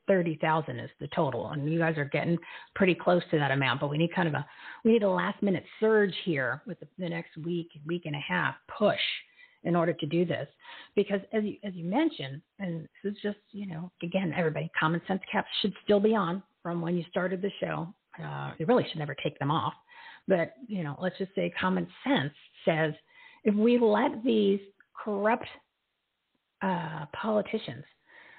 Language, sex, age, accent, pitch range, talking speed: English, female, 40-59, American, 160-210 Hz, 195 wpm